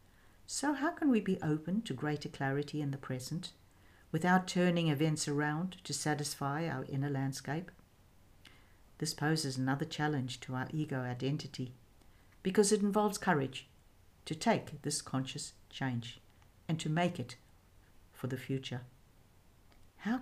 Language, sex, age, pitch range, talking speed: English, female, 60-79, 125-170 Hz, 135 wpm